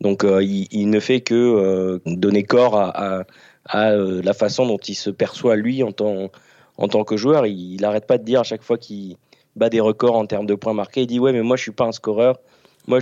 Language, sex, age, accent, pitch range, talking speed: French, male, 20-39, French, 100-115 Hz, 255 wpm